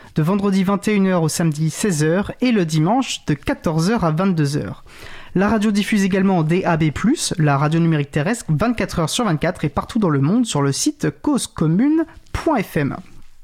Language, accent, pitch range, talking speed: French, French, 155-205 Hz, 150 wpm